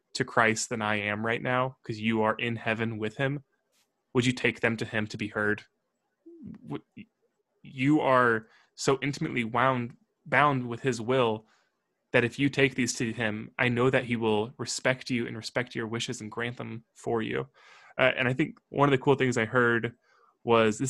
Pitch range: 110-130 Hz